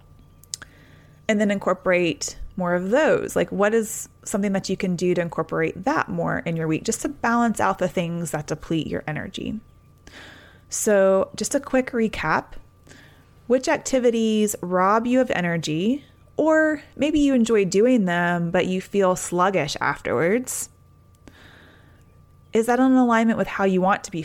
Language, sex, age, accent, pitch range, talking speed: English, female, 20-39, American, 175-230 Hz, 155 wpm